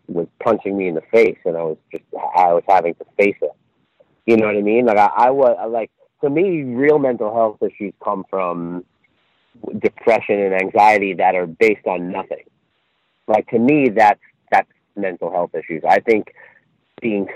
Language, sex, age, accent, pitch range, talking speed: English, male, 30-49, American, 95-115 Hz, 185 wpm